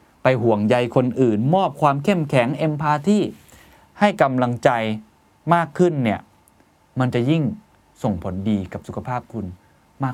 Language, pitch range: Thai, 100-140 Hz